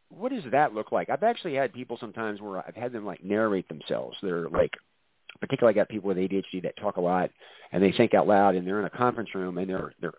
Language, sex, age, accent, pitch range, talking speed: English, male, 50-69, American, 100-140 Hz, 255 wpm